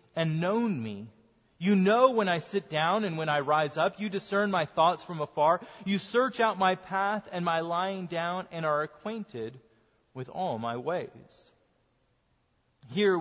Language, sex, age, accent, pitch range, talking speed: English, male, 30-49, American, 150-200 Hz, 170 wpm